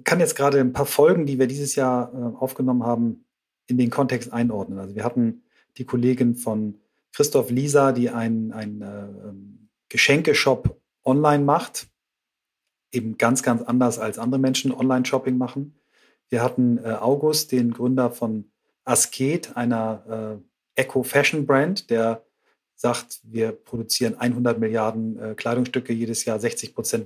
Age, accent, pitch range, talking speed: 40-59, German, 115-140 Hz, 140 wpm